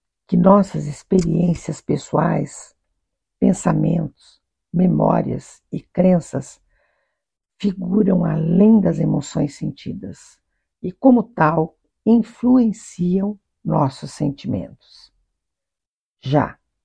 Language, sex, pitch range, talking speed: Portuguese, female, 165-205 Hz, 70 wpm